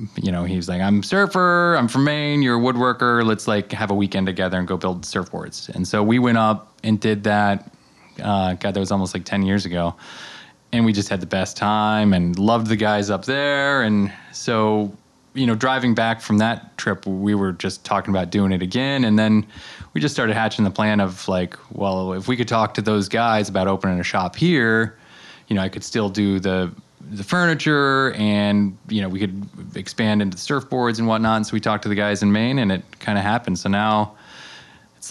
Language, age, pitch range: English, 20-39, 95-110 Hz